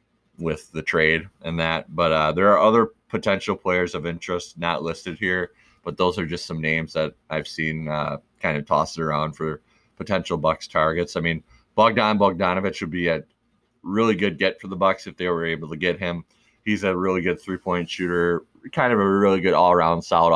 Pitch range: 80-90 Hz